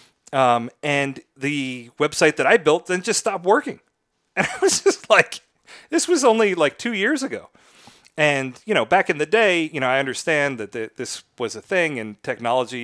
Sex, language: male, English